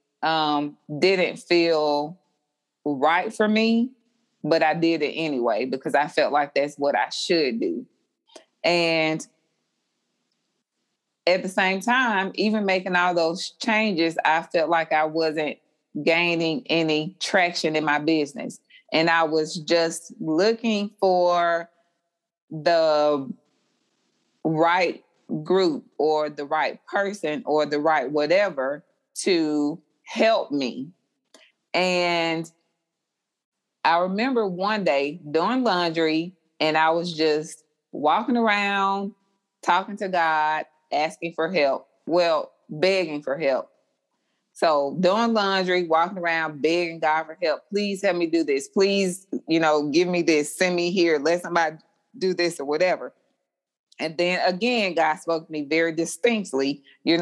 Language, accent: English, American